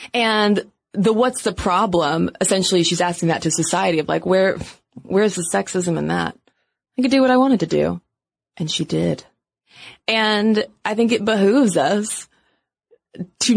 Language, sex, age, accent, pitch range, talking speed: English, female, 20-39, American, 180-235 Hz, 165 wpm